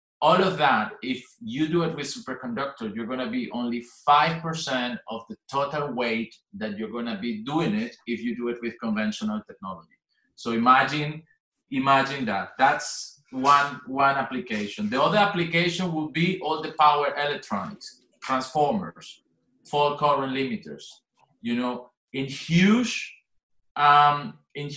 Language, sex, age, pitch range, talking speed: English, male, 30-49, 130-185 Hz, 150 wpm